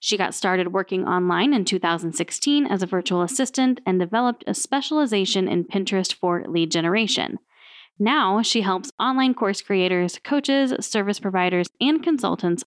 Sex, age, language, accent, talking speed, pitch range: female, 10-29, English, American, 145 wpm, 185-250 Hz